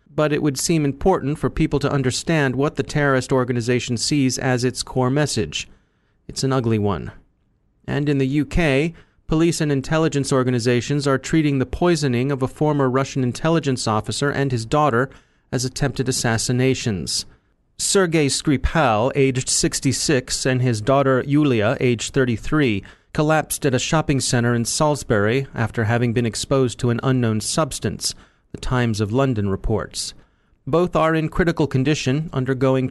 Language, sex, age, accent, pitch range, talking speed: English, male, 30-49, American, 120-145 Hz, 150 wpm